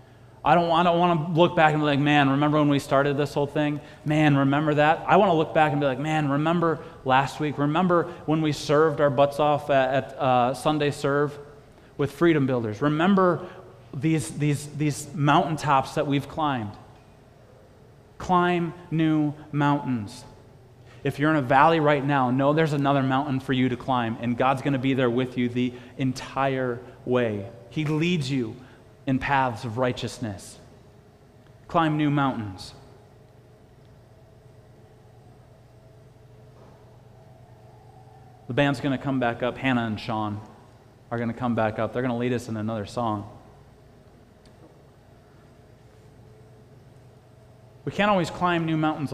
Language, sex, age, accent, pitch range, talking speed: English, male, 30-49, American, 120-145 Hz, 155 wpm